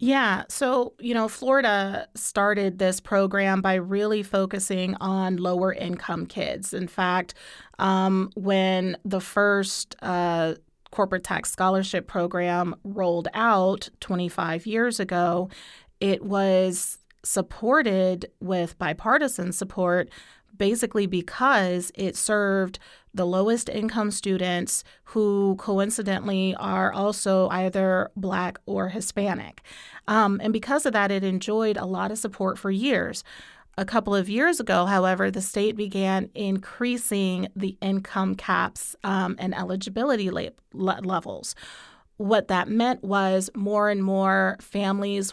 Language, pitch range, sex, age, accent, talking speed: English, 185-210 Hz, female, 30-49, American, 120 wpm